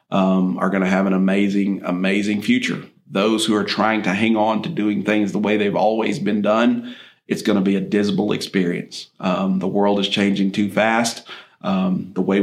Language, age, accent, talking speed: English, 40-59, American, 205 wpm